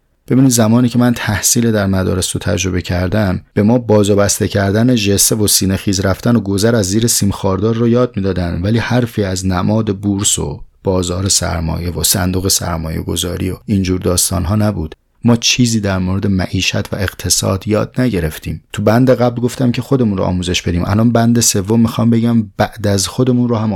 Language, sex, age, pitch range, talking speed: Persian, male, 30-49, 90-110 Hz, 185 wpm